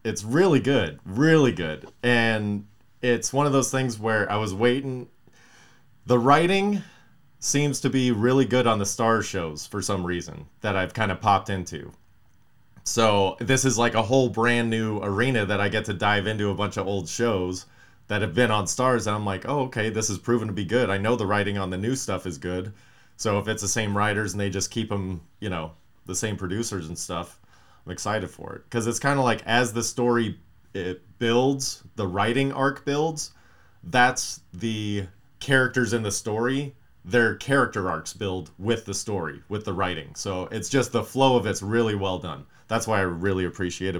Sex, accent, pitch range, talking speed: male, American, 95-120 Hz, 200 wpm